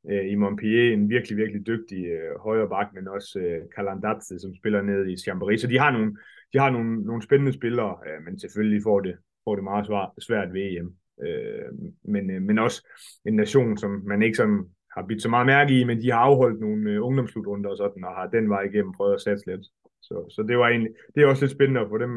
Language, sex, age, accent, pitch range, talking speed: Danish, male, 30-49, native, 100-115 Hz, 225 wpm